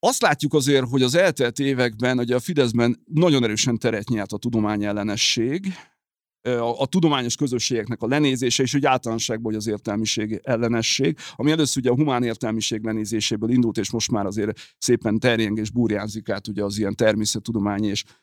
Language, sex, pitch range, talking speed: Hungarian, male, 105-130 Hz, 175 wpm